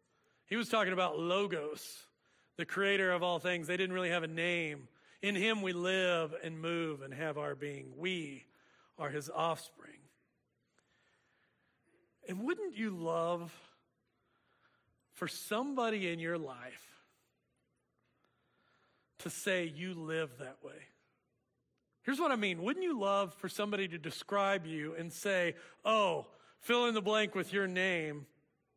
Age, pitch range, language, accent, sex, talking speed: 40-59, 160-205 Hz, English, American, male, 140 wpm